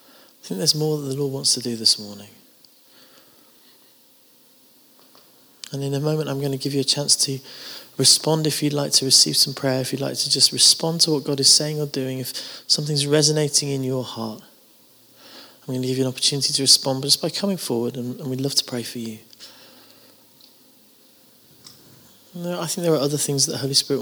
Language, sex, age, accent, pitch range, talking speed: English, male, 20-39, British, 130-150 Hz, 205 wpm